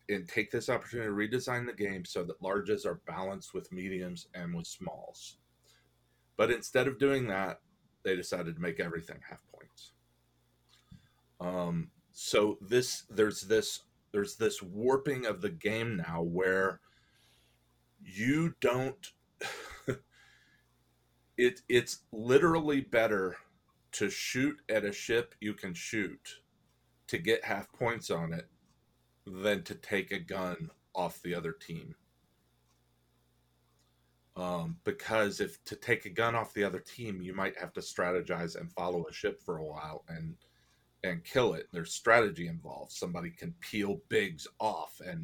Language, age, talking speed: English, 40-59, 145 wpm